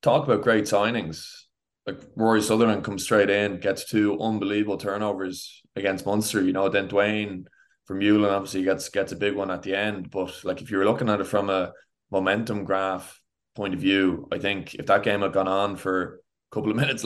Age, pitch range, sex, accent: 20-39, 95-105 Hz, male, Irish